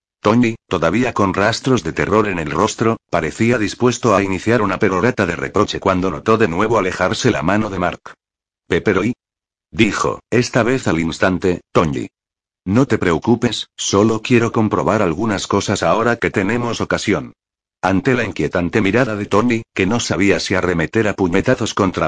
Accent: Spanish